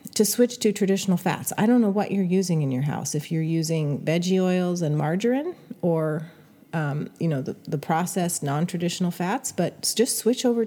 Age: 40-59